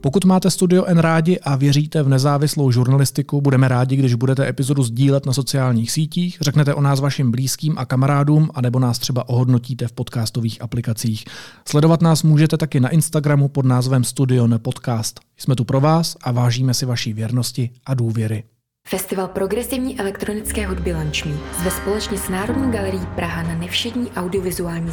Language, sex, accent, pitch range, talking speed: Czech, male, native, 130-190 Hz, 165 wpm